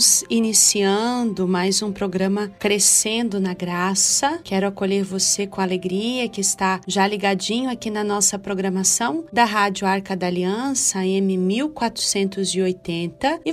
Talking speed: 120 wpm